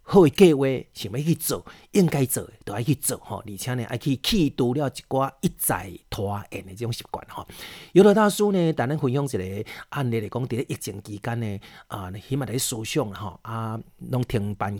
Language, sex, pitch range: Chinese, male, 110-150 Hz